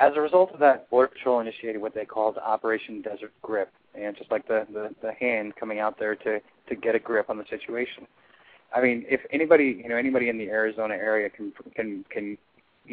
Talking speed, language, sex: 215 wpm, English, male